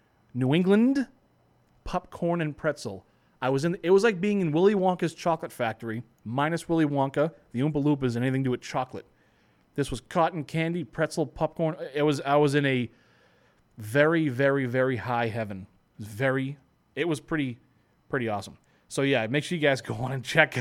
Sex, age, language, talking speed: male, 30-49, English, 185 wpm